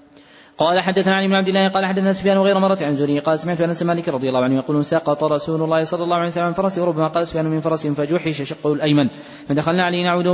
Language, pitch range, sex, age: Arabic, 150-175 Hz, male, 20-39